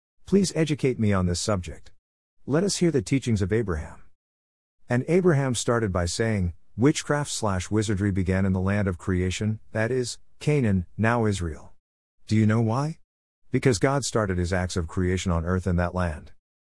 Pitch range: 90-120 Hz